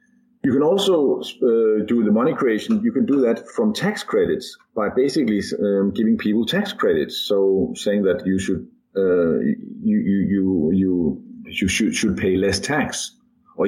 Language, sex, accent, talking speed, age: English, male, Danish, 170 wpm, 50-69